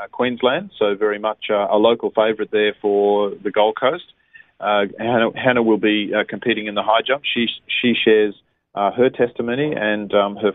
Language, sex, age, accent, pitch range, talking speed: English, male, 30-49, Australian, 100-120 Hz, 180 wpm